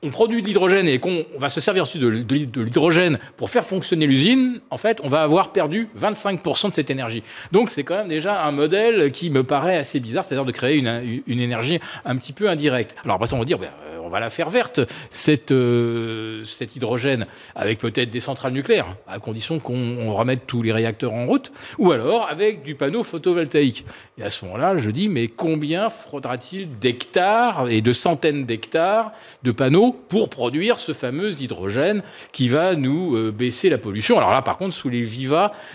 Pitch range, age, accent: 125-190 Hz, 40-59, French